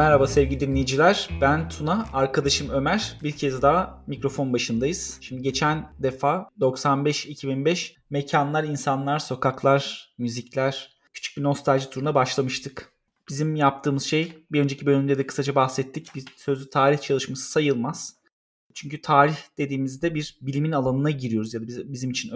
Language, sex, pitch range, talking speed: Turkish, male, 130-155 Hz, 135 wpm